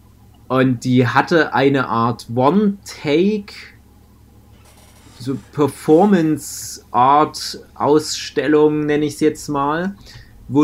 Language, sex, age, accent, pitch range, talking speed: German, male, 30-49, German, 115-150 Hz, 80 wpm